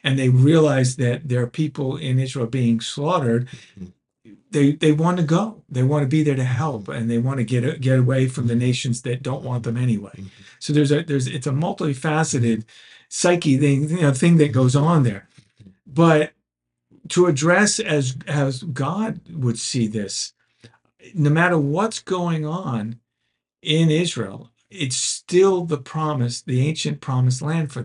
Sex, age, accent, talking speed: male, 50-69, American, 170 wpm